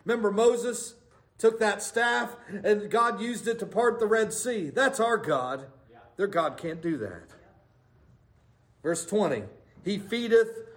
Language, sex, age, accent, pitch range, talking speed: English, male, 50-69, American, 180-245 Hz, 145 wpm